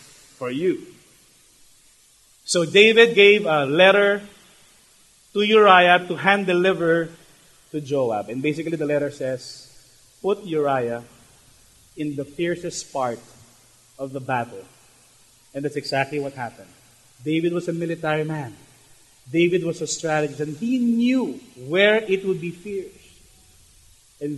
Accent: Filipino